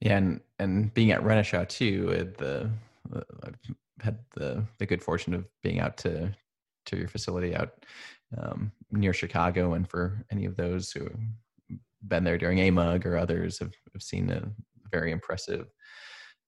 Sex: male